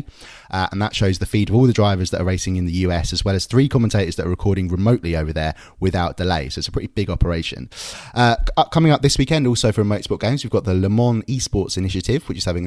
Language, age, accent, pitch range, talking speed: English, 20-39, British, 85-110 Hz, 255 wpm